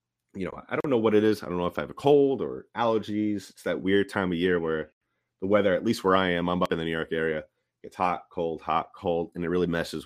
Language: English